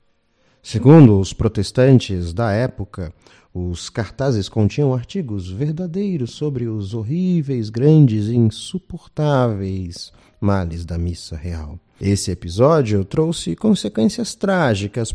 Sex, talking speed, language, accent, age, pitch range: male, 100 wpm, Portuguese, Brazilian, 40-59, 95-140 Hz